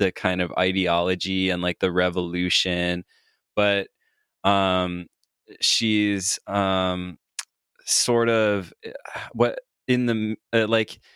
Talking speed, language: 100 wpm, English